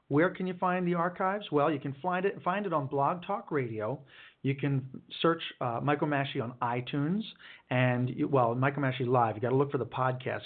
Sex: male